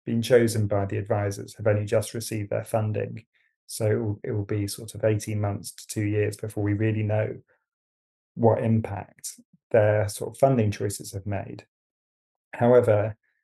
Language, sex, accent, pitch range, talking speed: English, male, British, 105-120 Hz, 170 wpm